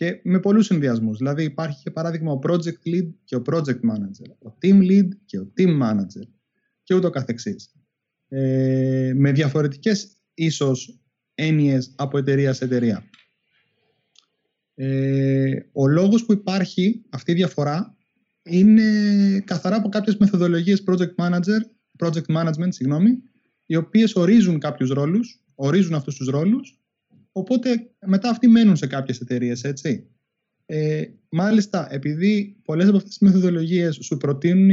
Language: Greek